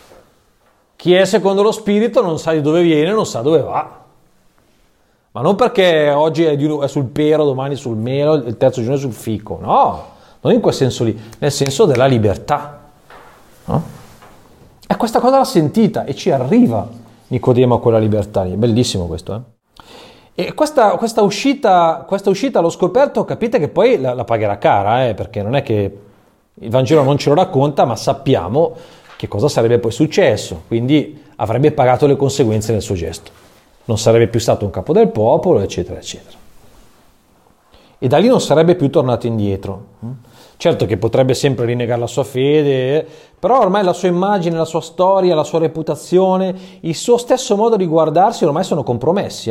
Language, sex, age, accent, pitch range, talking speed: Italian, male, 40-59, native, 115-175 Hz, 175 wpm